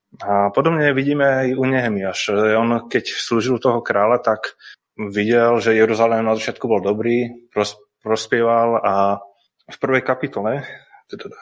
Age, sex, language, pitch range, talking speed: 20-39, male, Slovak, 110-130 Hz, 125 wpm